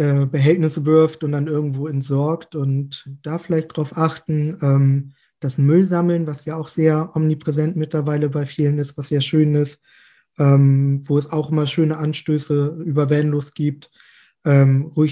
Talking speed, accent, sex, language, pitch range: 155 wpm, German, male, German, 145-165 Hz